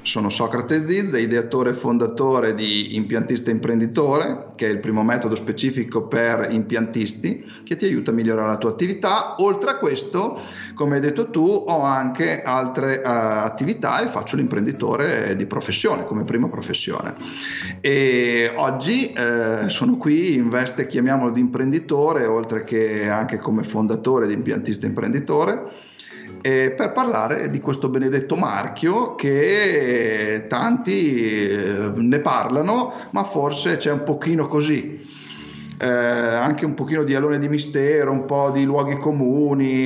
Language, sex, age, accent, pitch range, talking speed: Italian, male, 40-59, native, 115-150 Hz, 145 wpm